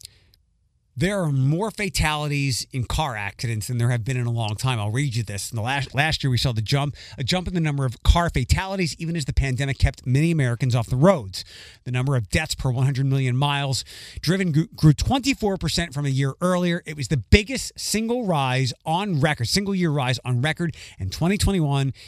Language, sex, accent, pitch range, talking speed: English, male, American, 120-165 Hz, 210 wpm